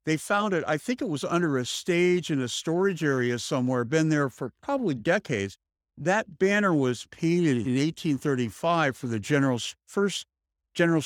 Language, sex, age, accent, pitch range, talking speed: English, male, 50-69, American, 125-160 Hz, 170 wpm